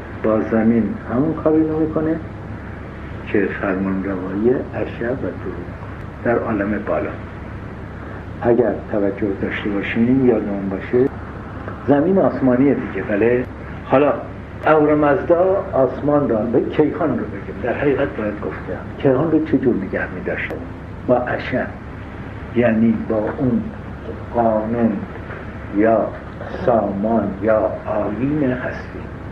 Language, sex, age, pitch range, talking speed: Persian, male, 60-79, 100-130 Hz, 110 wpm